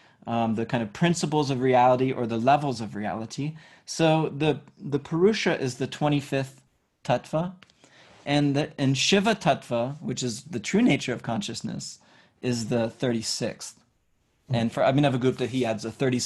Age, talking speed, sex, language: 20-39, 150 wpm, male, English